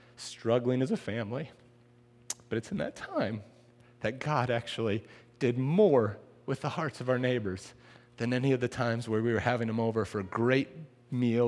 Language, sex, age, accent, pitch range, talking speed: English, male, 30-49, American, 110-125 Hz, 185 wpm